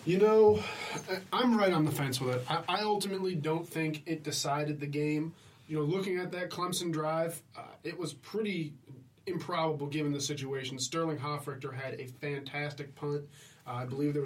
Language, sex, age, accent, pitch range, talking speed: English, male, 30-49, American, 135-155 Hz, 185 wpm